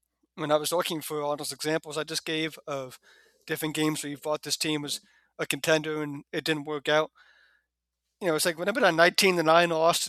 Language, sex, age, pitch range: English, male, 30-49, 145-165 Hz